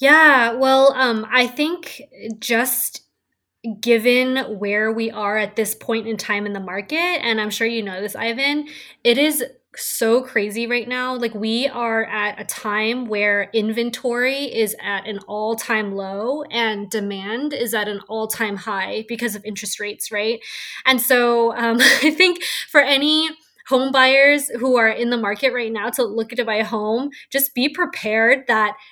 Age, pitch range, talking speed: 20-39, 215-255 Hz, 170 wpm